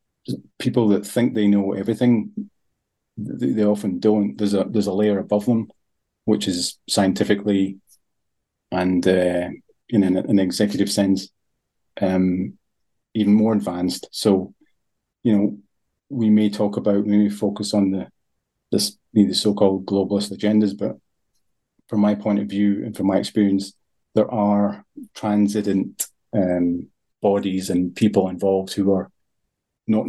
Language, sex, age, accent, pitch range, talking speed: English, male, 30-49, British, 95-105 Hz, 135 wpm